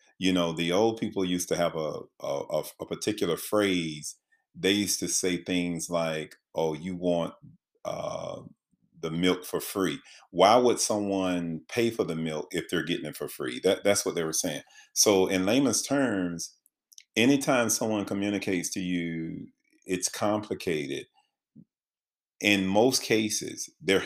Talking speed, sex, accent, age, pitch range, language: 155 wpm, male, American, 40-59, 85-105 Hz, English